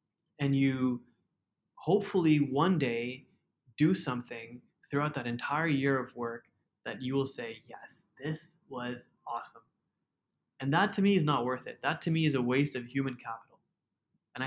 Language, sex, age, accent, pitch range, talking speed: English, male, 20-39, American, 120-145 Hz, 160 wpm